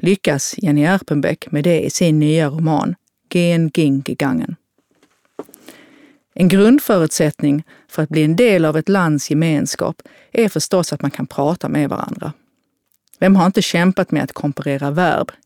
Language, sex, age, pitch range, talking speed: Swedish, female, 40-59, 150-195 Hz, 150 wpm